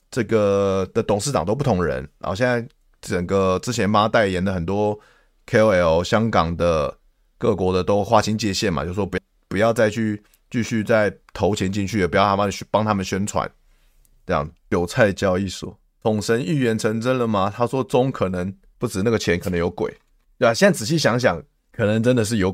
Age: 20-39